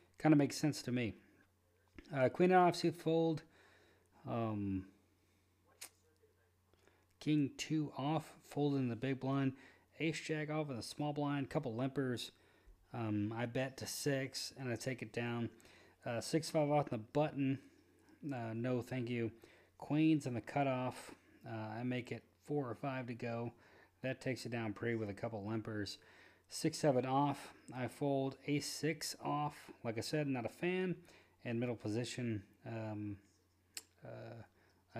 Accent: American